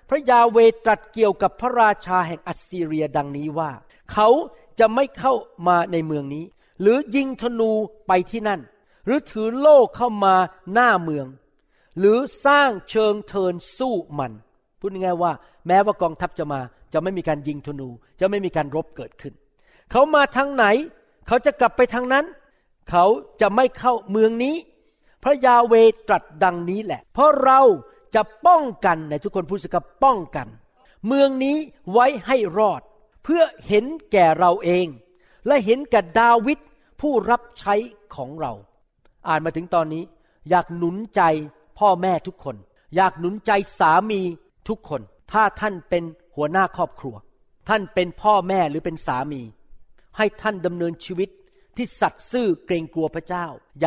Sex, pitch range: male, 165-235 Hz